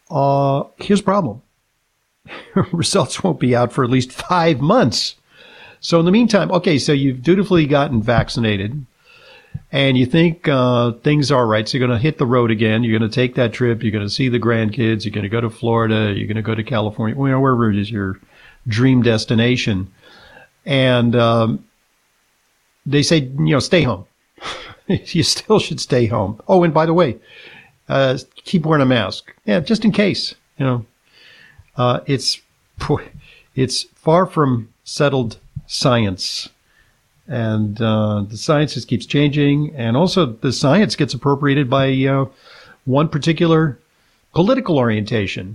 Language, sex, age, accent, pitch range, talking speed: English, male, 50-69, American, 115-145 Hz, 160 wpm